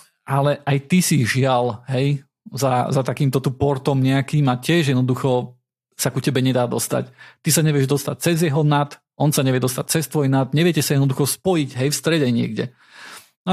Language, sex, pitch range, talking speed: Slovak, male, 135-165 Hz, 190 wpm